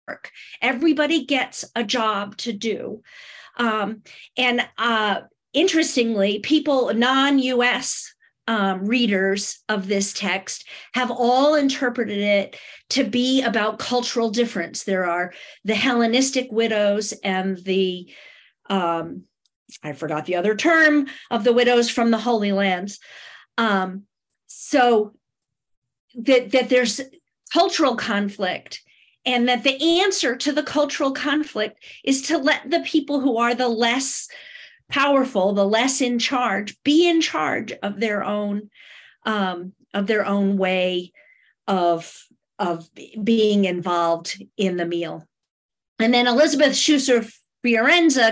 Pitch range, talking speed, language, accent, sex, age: 195-260 Hz, 120 wpm, English, American, female, 50-69